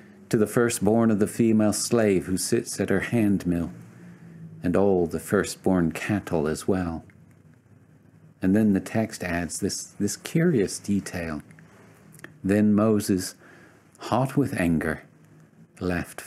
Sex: male